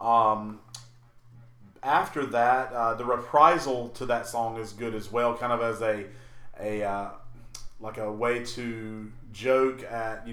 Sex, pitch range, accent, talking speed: male, 110-125 Hz, American, 150 wpm